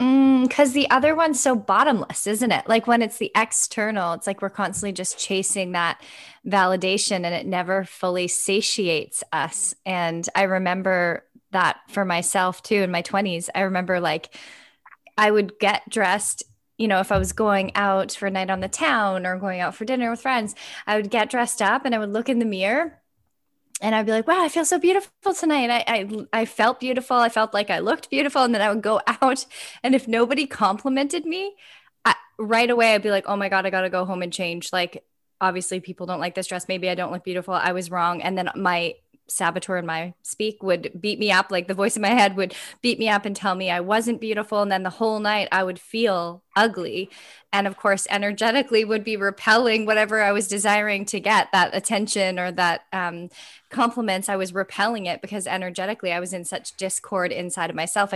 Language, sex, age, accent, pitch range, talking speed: English, female, 10-29, American, 185-225 Hz, 215 wpm